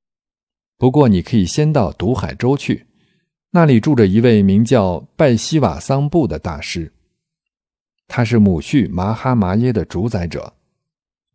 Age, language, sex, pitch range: 50-69, Chinese, male, 90-125 Hz